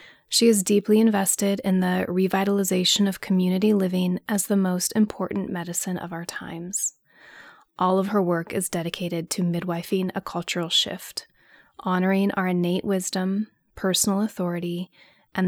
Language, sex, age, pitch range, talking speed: English, female, 20-39, 175-200 Hz, 140 wpm